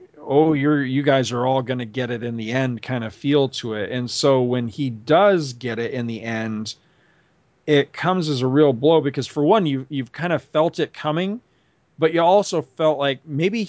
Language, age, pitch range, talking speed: English, 40-59, 125-170 Hz, 215 wpm